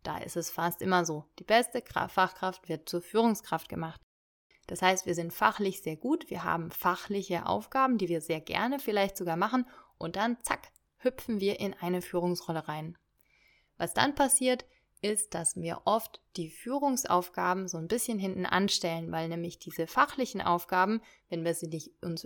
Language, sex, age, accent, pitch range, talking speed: German, female, 30-49, German, 170-220 Hz, 175 wpm